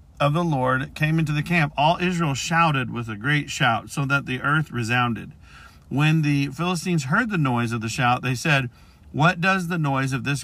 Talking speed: 205 wpm